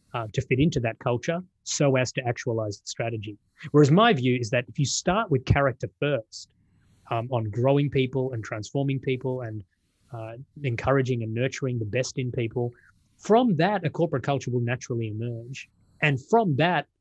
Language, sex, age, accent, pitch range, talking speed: English, male, 20-39, Australian, 110-135 Hz, 175 wpm